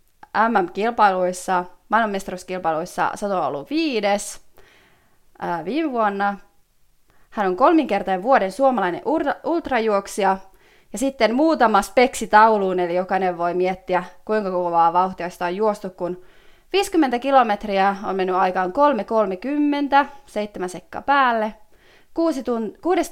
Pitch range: 185-255 Hz